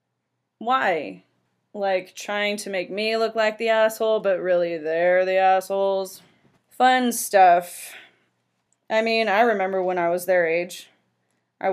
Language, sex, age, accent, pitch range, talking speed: English, female, 10-29, American, 170-195 Hz, 140 wpm